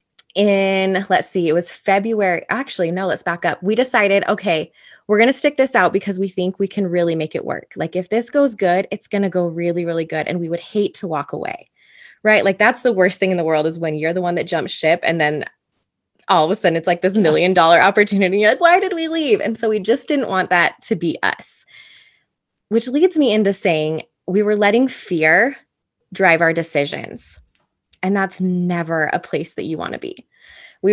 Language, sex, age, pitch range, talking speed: English, female, 20-39, 175-225 Hz, 225 wpm